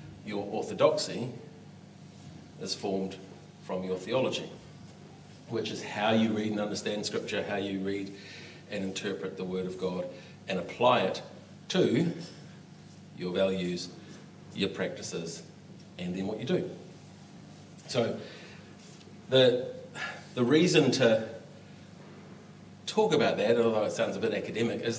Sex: male